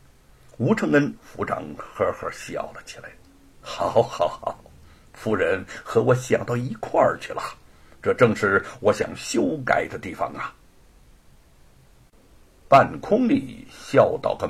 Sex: male